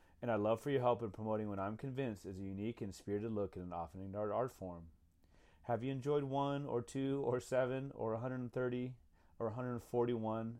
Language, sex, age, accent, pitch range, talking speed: English, male, 30-49, American, 95-125 Hz, 200 wpm